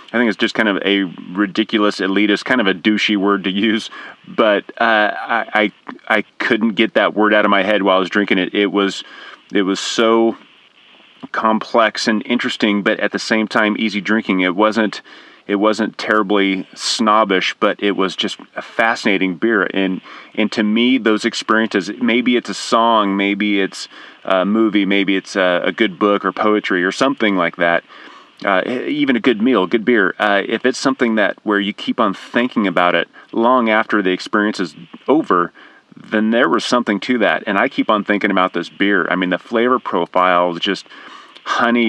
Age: 30-49